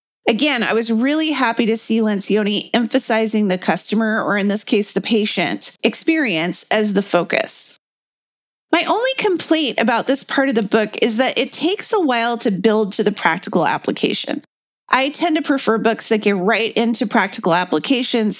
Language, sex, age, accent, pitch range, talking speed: English, female, 30-49, American, 205-260 Hz, 175 wpm